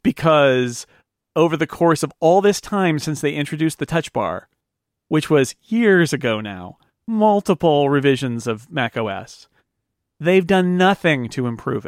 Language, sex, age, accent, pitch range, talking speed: English, male, 40-59, American, 125-160 Hz, 140 wpm